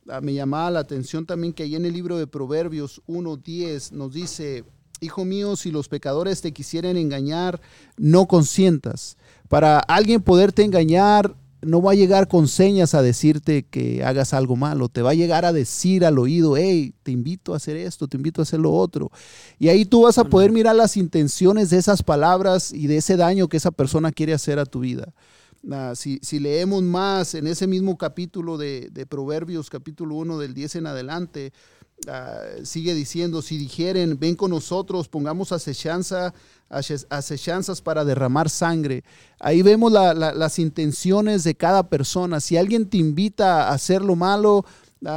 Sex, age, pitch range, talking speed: male, 40-59, 145-185 Hz, 170 wpm